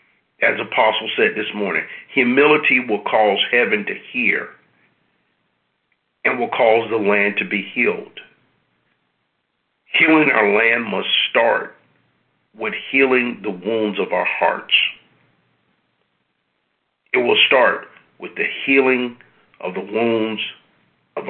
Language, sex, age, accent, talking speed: English, male, 50-69, American, 120 wpm